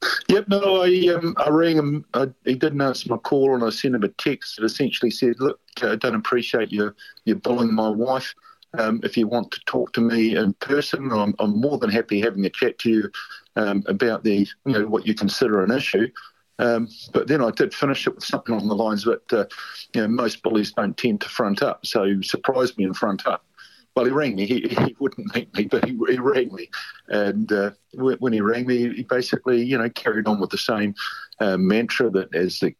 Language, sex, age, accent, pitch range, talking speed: English, male, 50-69, Australian, 100-130 Hz, 225 wpm